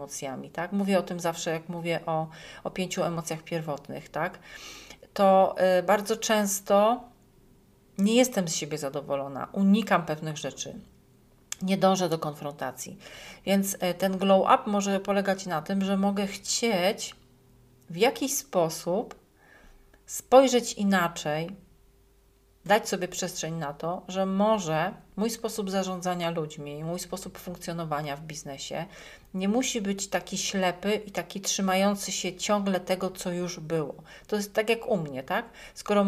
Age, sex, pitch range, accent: 40-59, female, 165-200 Hz, native